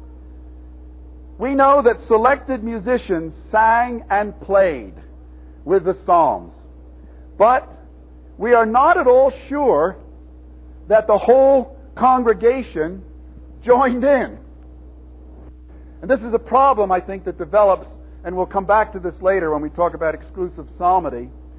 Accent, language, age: American, English, 50-69